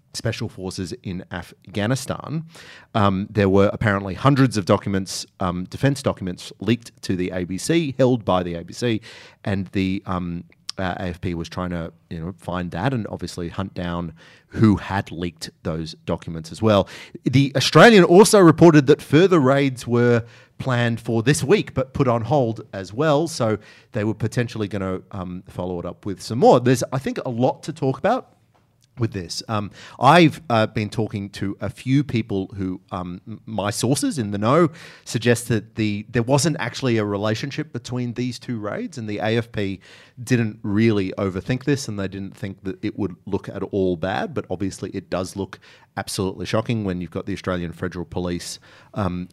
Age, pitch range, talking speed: 30-49, 95-130 Hz, 180 wpm